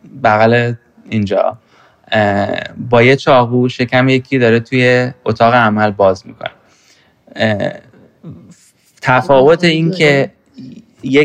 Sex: male